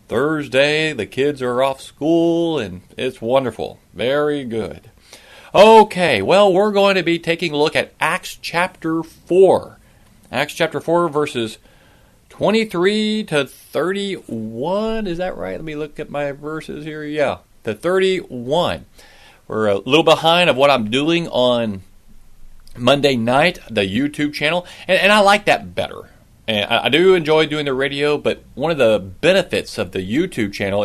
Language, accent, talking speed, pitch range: English, American, 155 wpm, 120-165 Hz